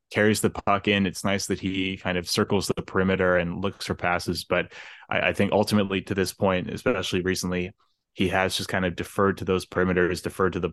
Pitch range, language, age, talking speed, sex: 90-95 Hz, English, 20-39, 220 wpm, male